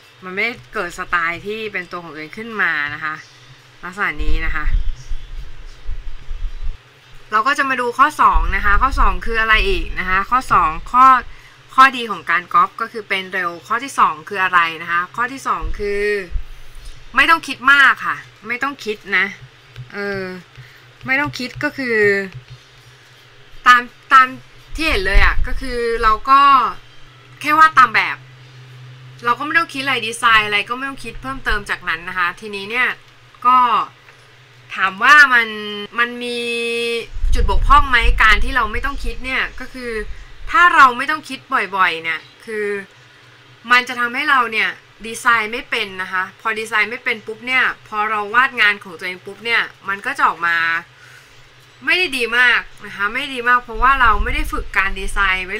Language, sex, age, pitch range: Thai, female, 20-39, 170-250 Hz